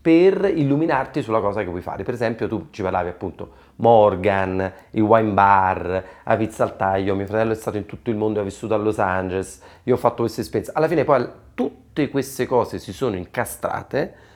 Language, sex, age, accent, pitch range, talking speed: Italian, male, 30-49, native, 95-125 Hz, 190 wpm